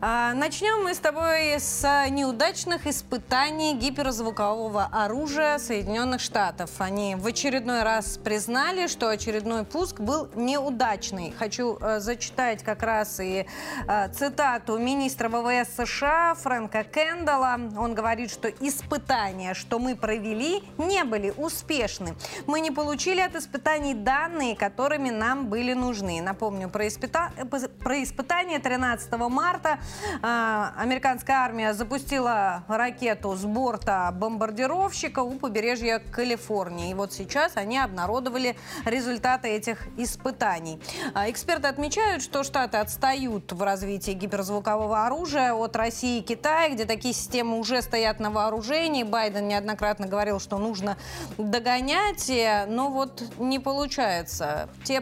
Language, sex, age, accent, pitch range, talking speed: Russian, female, 30-49, native, 215-280 Hz, 120 wpm